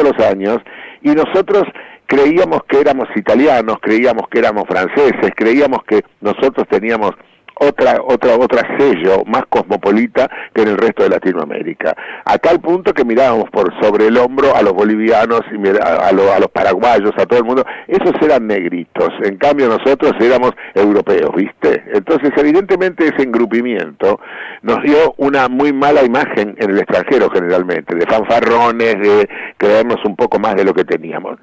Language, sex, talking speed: Spanish, male, 160 wpm